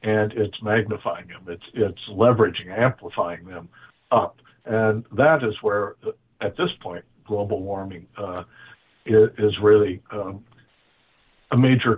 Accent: American